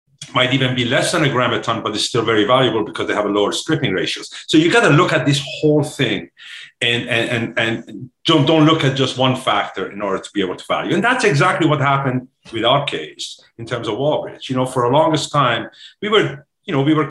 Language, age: English, 50-69